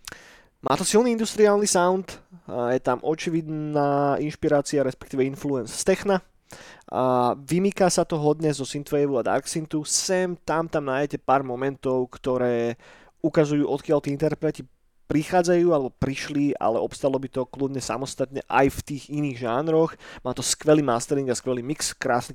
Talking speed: 140 wpm